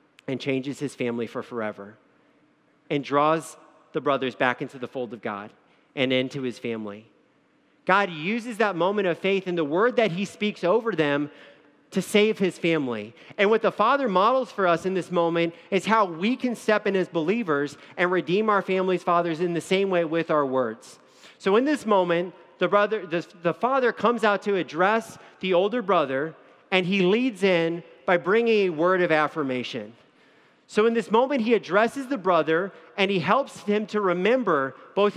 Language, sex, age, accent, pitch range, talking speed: English, male, 40-59, American, 160-210 Hz, 185 wpm